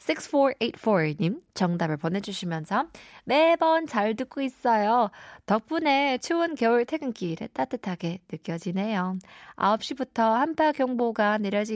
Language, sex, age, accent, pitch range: Korean, female, 20-39, native, 180-255 Hz